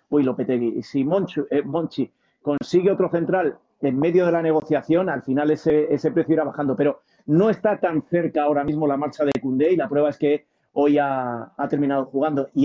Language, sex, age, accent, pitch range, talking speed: Spanish, male, 40-59, Spanish, 145-190 Hz, 205 wpm